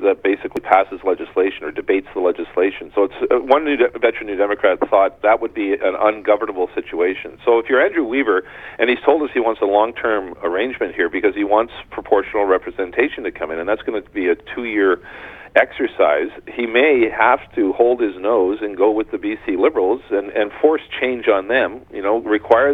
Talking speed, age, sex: 200 wpm, 40-59, male